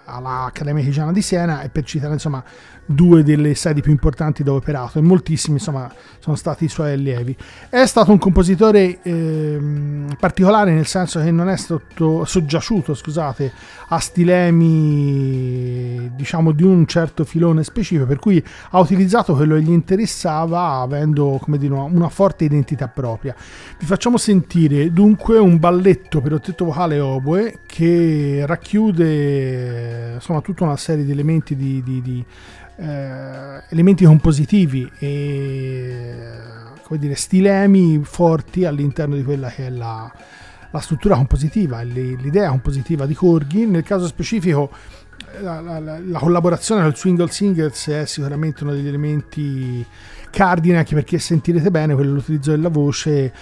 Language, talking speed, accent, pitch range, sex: Italian, 140 wpm, native, 140-175 Hz, male